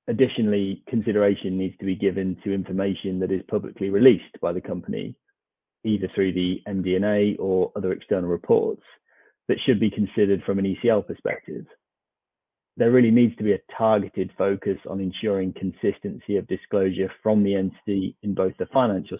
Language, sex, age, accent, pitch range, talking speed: English, male, 30-49, British, 95-110 Hz, 160 wpm